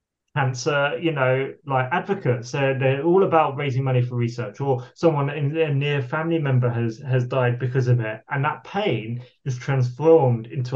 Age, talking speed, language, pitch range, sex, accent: 20-39, 185 wpm, English, 125-150 Hz, male, British